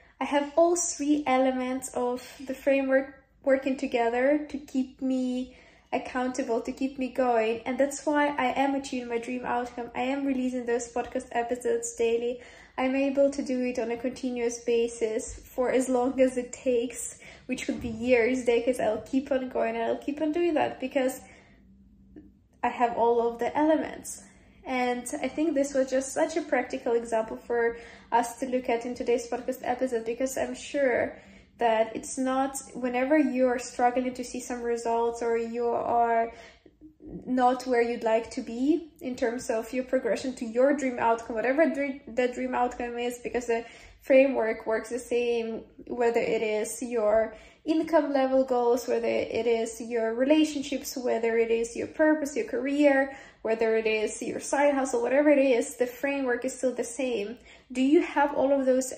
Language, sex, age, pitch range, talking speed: English, female, 10-29, 235-270 Hz, 175 wpm